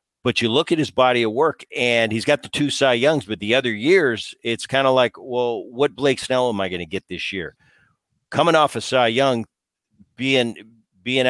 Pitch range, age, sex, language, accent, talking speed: 105-130 Hz, 50-69, male, English, American, 220 wpm